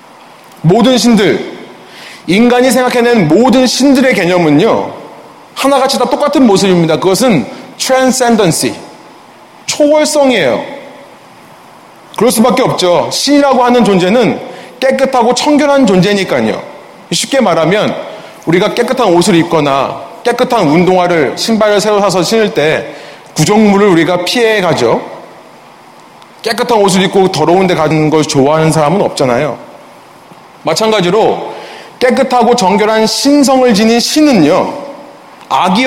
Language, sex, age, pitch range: Korean, male, 30-49, 190-255 Hz